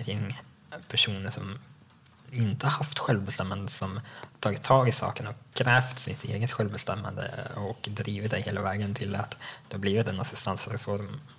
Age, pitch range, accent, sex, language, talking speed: 20-39, 105-130 Hz, Norwegian, male, Swedish, 140 wpm